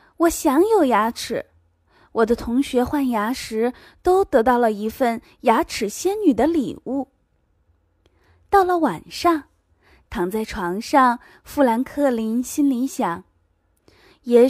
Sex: female